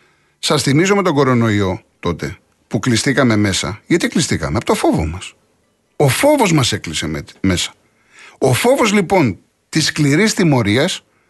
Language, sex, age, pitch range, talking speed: Greek, male, 60-79, 110-170 Hz, 140 wpm